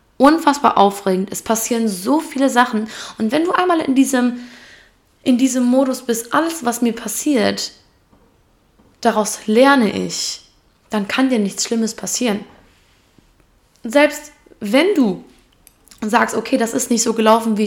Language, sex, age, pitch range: German, female, 20-39, 205-265 Hz